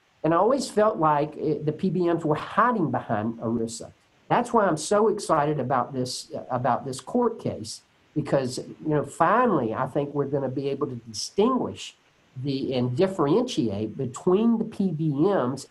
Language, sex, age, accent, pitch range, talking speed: English, male, 50-69, American, 120-170 Hz, 155 wpm